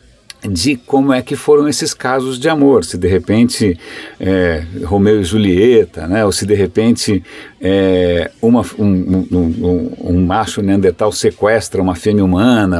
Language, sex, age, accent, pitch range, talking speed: Portuguese, male, 50-69, Brazilian, 100-140 Hz, 155 wpm